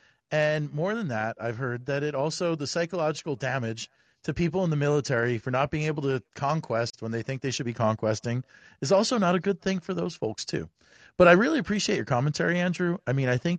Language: English